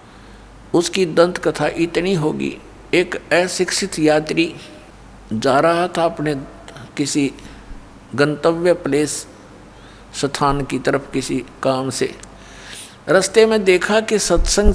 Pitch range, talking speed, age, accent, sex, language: 150-190 Hz, 105 wpm, 60-79, native, male, Hindi